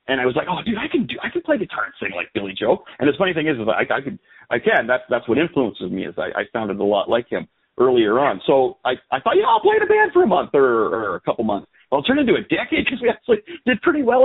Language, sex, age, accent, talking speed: English, male, 40-59, American, 305 wpm